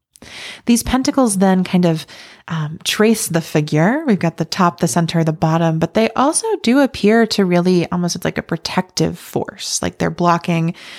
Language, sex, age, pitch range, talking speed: English, female, 20-39, 165-190 Hz, 175 wpm